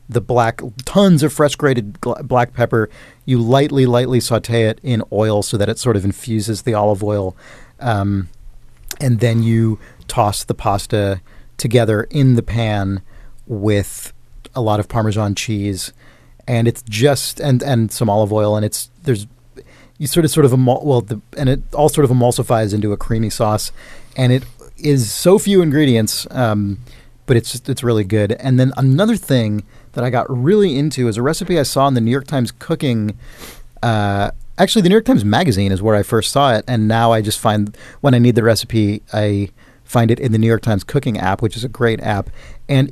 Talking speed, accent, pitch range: 195 wpm, American, 110-130 Hz